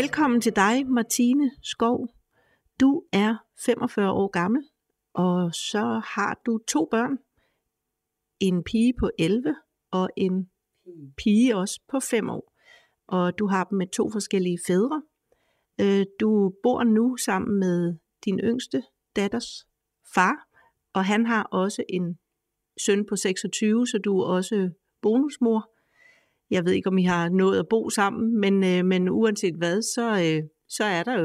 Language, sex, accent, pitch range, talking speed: Danish, female, native, 185-230 Hz, 145 wpm